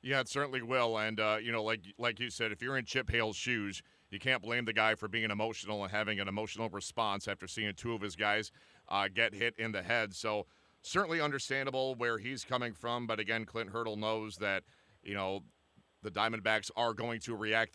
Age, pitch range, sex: 40-59, 105-120 Hz, male